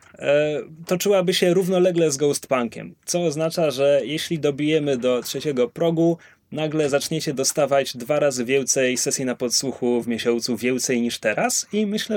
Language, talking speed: Polish, 145 wpm